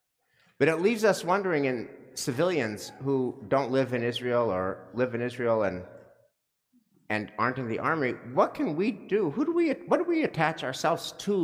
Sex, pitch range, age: male, 125-180 Hz, 50-69